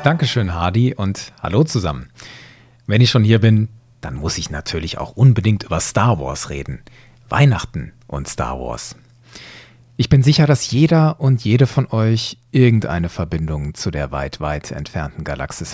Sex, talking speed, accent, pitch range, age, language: male, 155 wpm, German, 95-130 Hz, 40-59, German